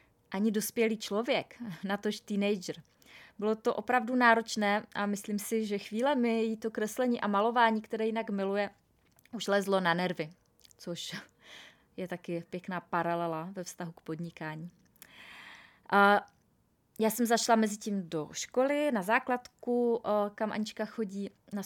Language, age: Czech, 20-39